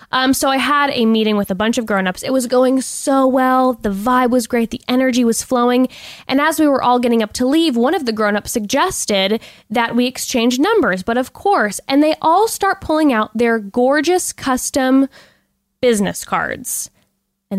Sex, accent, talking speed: female, American, 195 wpm